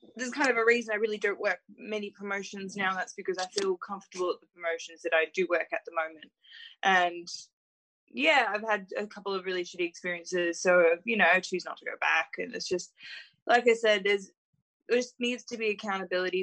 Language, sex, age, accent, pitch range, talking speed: English, female, 20-39, Australian, 170-210 Hz, 215 wpm